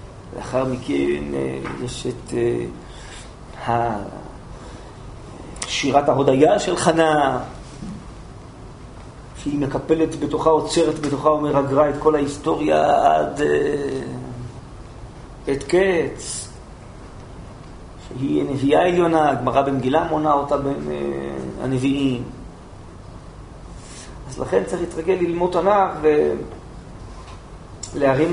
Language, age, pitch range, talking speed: Hebrew, 40-59, 115-155 Hz, 75 wpm